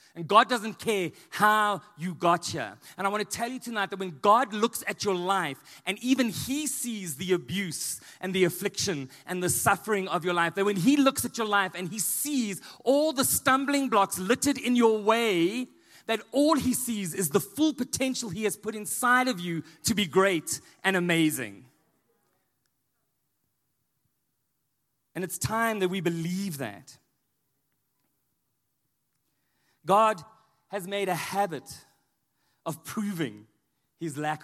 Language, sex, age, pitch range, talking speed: English, male, 30-49, 160-220 Hz, 155 wpm